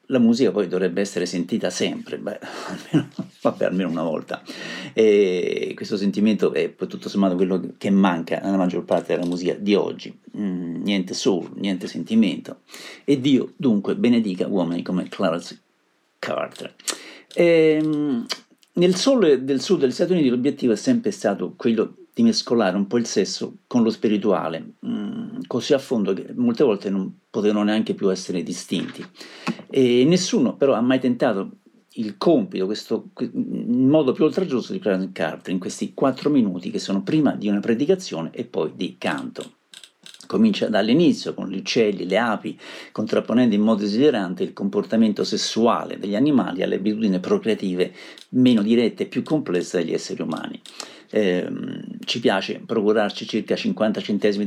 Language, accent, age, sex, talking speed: Italian, native, 50-69, male, 155 wpm